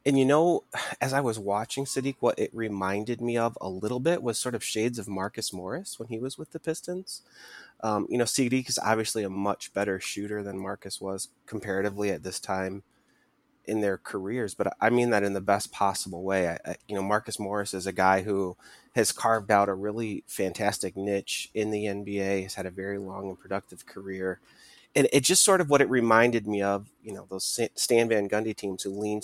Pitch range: 100-120 Hz